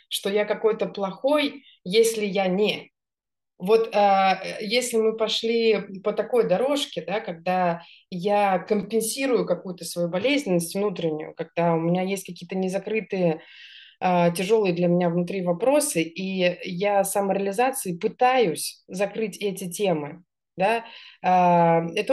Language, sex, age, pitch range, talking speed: Russian, female, 30-49, 175-210 Hz, 110 wpm